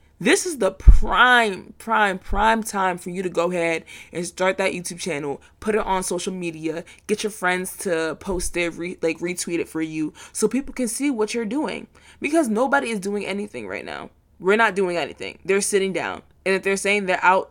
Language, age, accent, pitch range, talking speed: English, 20-39, American, 170-210 Hz, 210 wpm